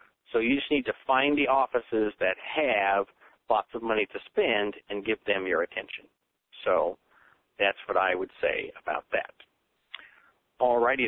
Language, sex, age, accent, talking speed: English, male, 50-69, American, 155 wpm